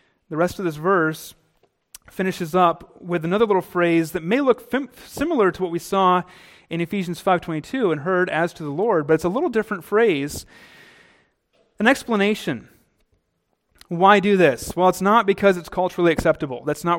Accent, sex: American, male